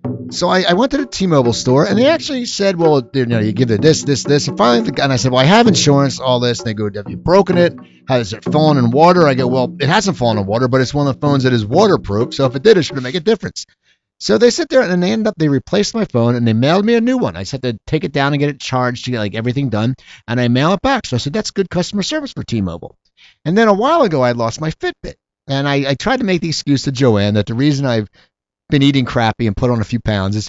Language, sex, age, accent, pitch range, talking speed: English, male, 50-69, American, 115-175 Hz, 300 wpm